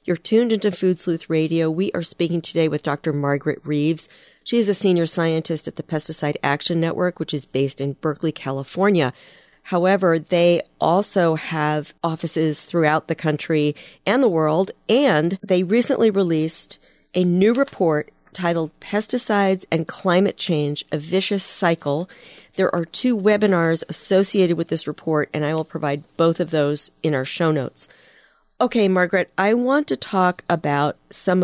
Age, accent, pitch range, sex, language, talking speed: 40-59, American, 155-190 Hz, female, English, 160 wpm